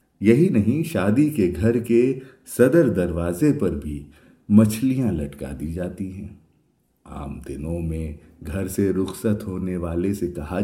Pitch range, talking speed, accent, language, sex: 85-115 Hz, 140 wpm, Indian, English, male